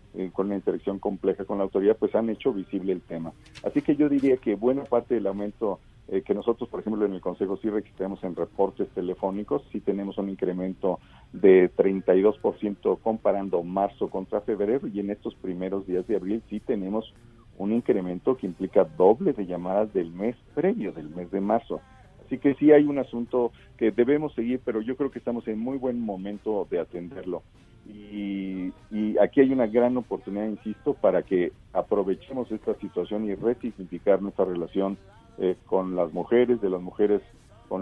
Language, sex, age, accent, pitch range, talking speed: Spanish, male, 50-69, Mexican, 95-115 Hz, 180 wpm